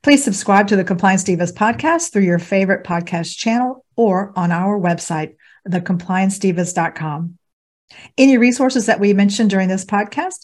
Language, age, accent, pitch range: English, 50-69, American, 175-230 Hz